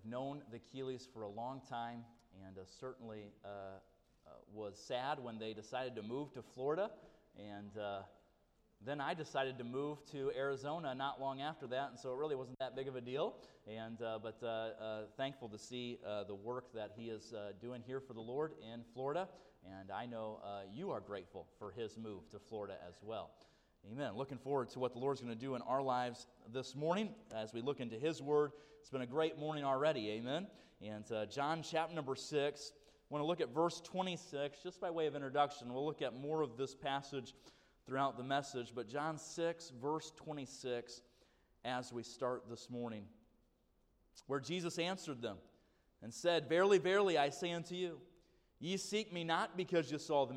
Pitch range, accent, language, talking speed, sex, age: 115-150 Hz, American, English, 200 wpm, male, 30-49